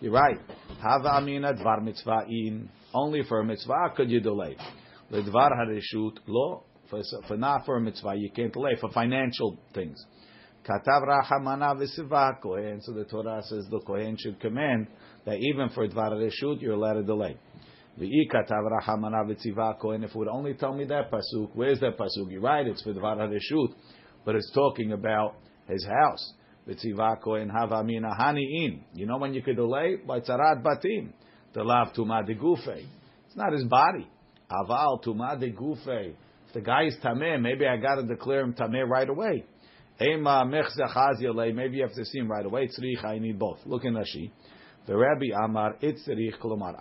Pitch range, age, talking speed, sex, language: 110-130 Hz, 50-69, 160 wpm, male, English